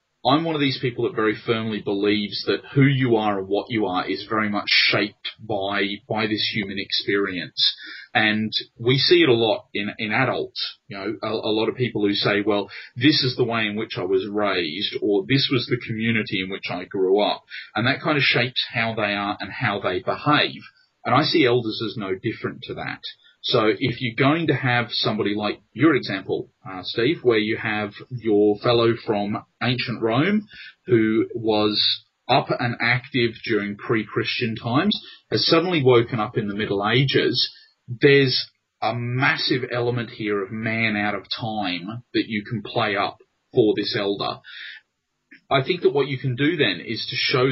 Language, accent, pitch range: English, Australian, 105-130 Hz